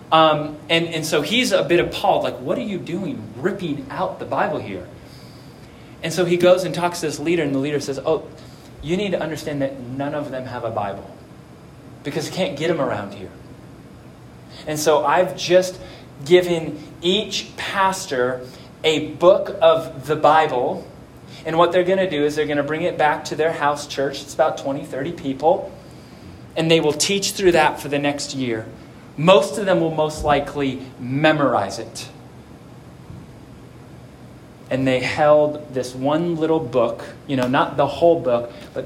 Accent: American